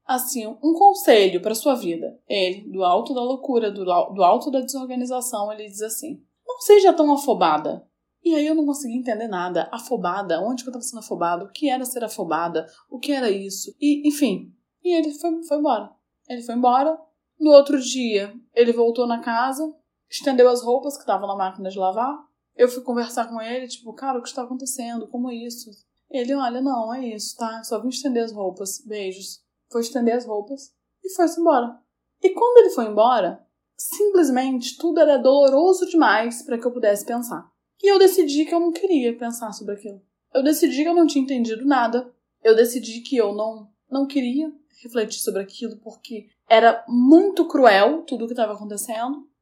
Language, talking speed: Portuguese, 190 wpm